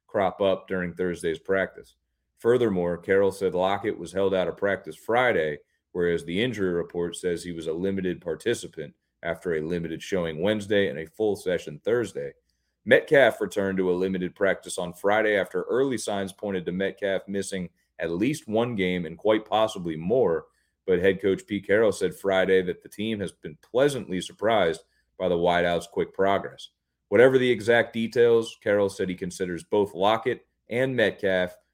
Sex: male